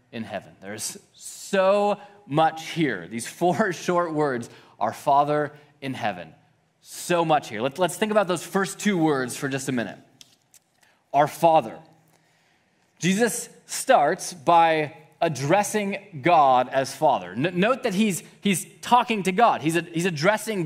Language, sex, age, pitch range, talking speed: English, male, 20-39, 150-205 Hz, 140 wpm